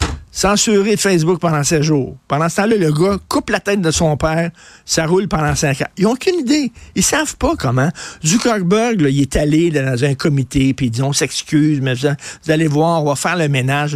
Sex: male